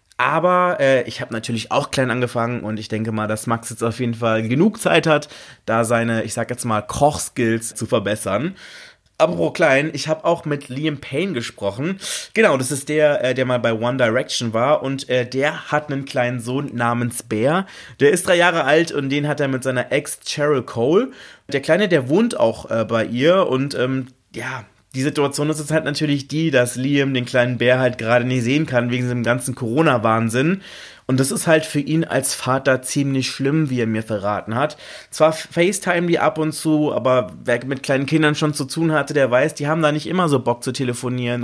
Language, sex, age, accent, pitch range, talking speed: German, male, 30-49, German, 120-145 Hz, 210 wpm